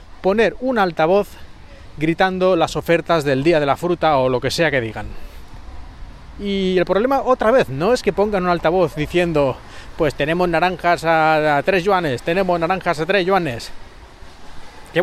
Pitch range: 140-185 Hz